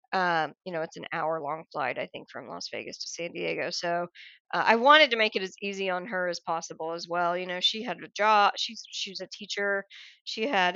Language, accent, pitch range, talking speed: English, American, 180-205 Hz, 245 wpm